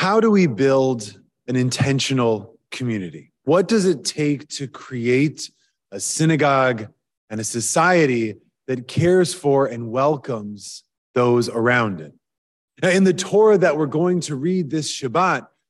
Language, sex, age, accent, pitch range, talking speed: English, male, 30-49, American, 140-195 Hz, 140 wpm